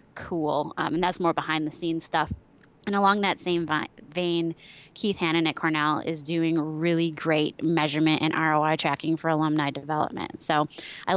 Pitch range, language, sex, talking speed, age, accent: 155-185 Hz, English, female, 170 wpm, 20-39, American